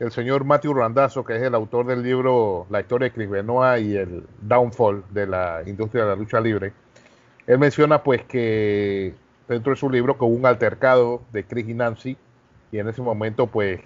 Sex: male